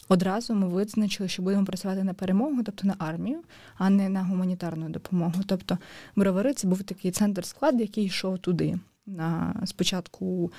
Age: 20-39